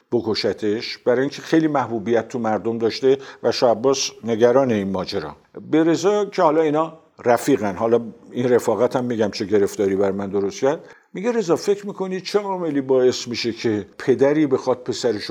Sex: male